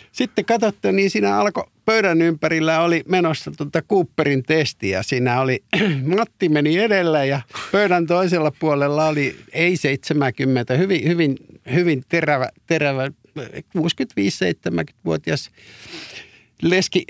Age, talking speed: 50-69, 110 wpm